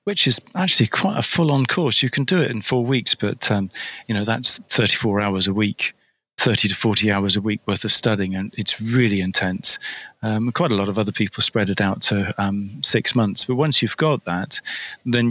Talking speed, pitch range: 220 wpm, 105-120 Hz